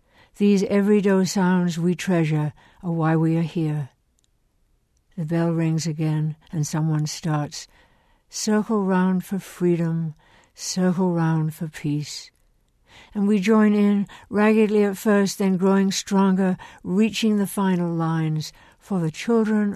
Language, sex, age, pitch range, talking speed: English, female, 60-79, 160-195 Hz, 130 wpm